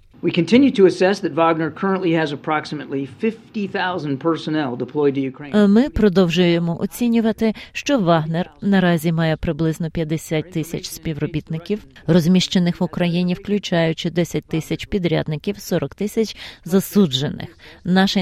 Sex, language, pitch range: female, Ukrainian, 155-195 Hz